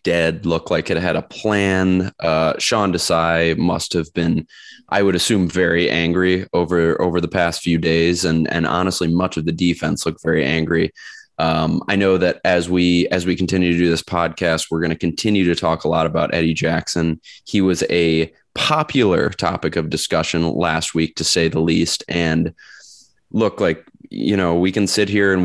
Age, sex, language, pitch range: 20-39, male, English, 80-95 Hz